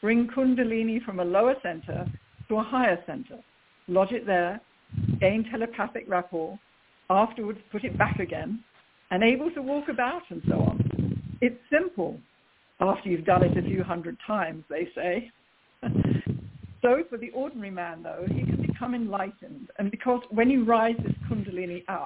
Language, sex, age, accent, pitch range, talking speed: English, female, 60-79, British, 180-240 Hz, 160 wpm